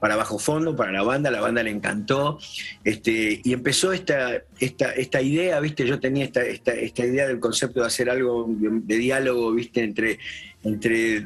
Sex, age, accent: male, 40-59, Argentinian